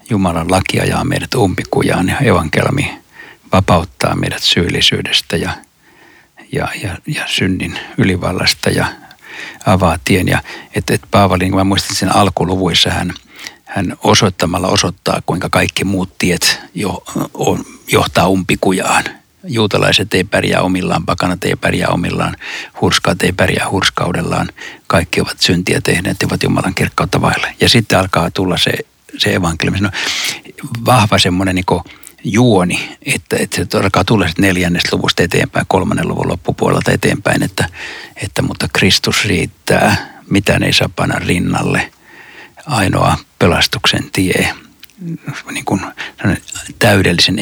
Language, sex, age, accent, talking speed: Finnish, male, 60-79, native, 120 wpm